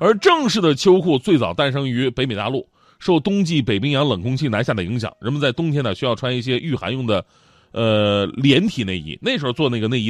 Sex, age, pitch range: male, 30-49, 115-170 Hz